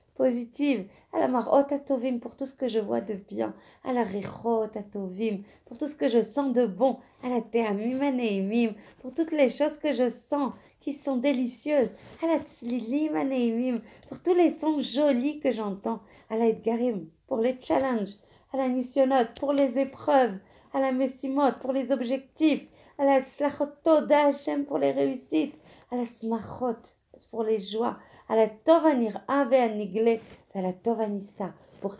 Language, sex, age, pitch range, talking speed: French, female, 40-59, 220-275 Hz, 145 wpm